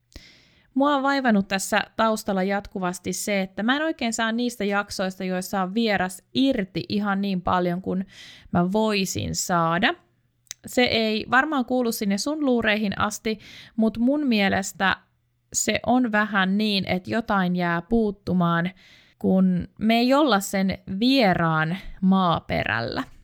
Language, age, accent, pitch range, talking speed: Finnish, 20-39, native, 185-235 Hz, 130 wpm